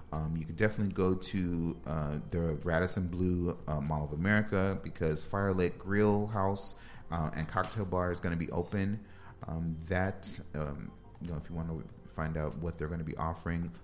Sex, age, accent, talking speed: male, 30-49, American, 195 wpm